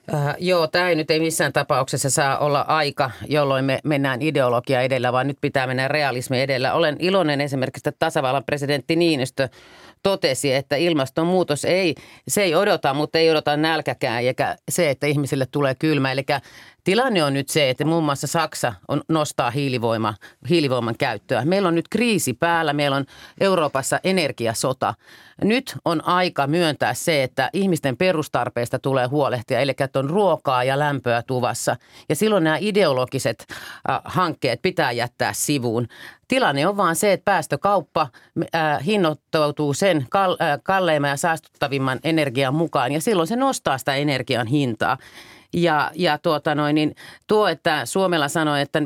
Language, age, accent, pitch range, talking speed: Finnish, 30-49, native, 135-165 Hz, 150 wpm